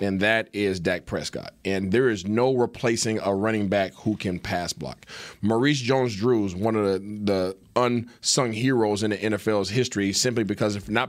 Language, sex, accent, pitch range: English, male, American, 100-125 Hz